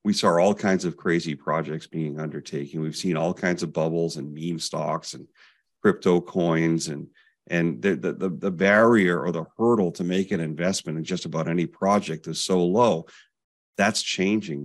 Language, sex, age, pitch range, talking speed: English, male, 40-59, 80-95 Hz, 180 wpm